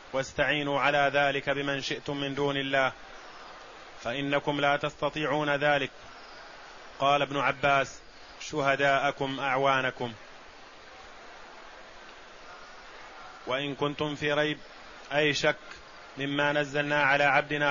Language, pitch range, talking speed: Arabic, 140-150 Hz, 90 wpm